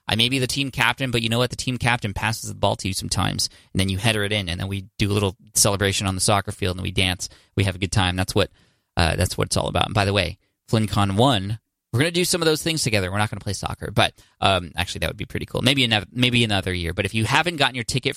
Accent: American